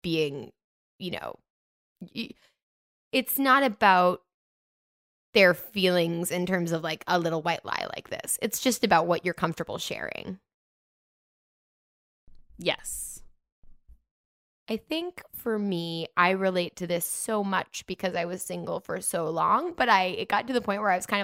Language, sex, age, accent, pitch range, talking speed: English, female, 10-29, American, 175-255 Hz, 155 wpm